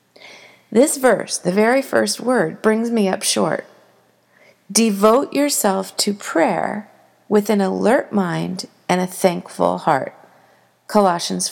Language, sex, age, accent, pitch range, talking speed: English, female, 50-69, American, 185-240 Hz, 120 wpm